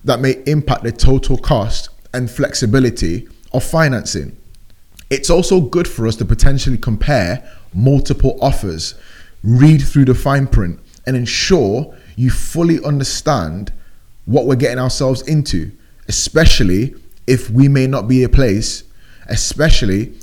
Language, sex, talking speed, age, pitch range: English, male, 135 wpm, 30-49, 105-145 Hz